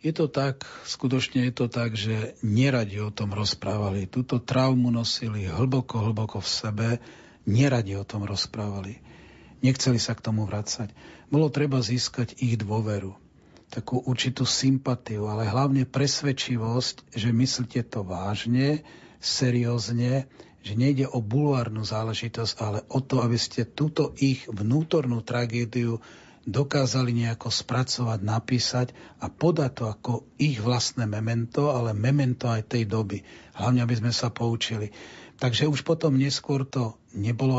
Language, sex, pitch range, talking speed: Slovak, male, 110-130 Hz, 135 wpm